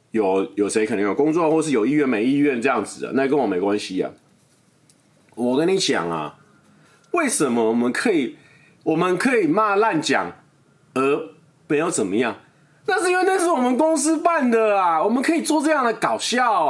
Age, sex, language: 30-49, male, Chinese